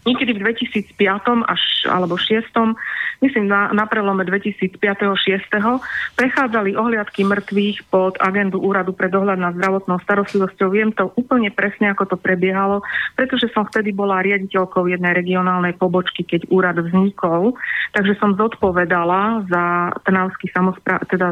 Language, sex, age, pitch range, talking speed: Slovak, female, 30-49, 185-215 Hz, 130 wpm